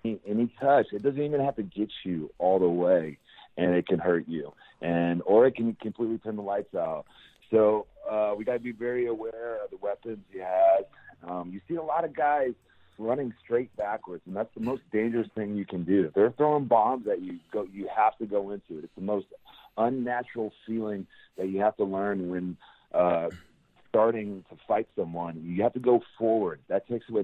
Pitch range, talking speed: 95-125 Hz, 205 wpm